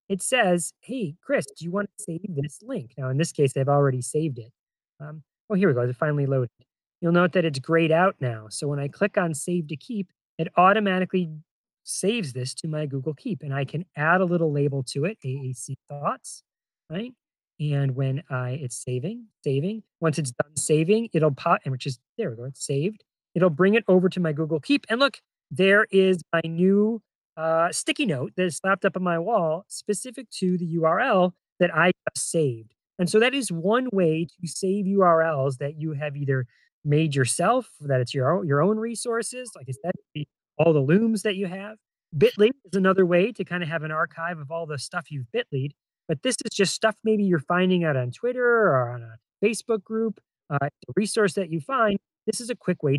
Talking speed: 215 wpm